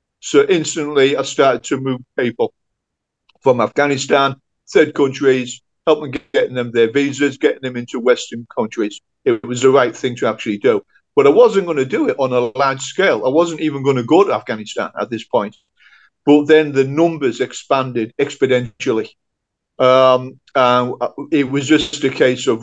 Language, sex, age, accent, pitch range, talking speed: English, male, 40-59, British, 120-145 Hz, 170 wpm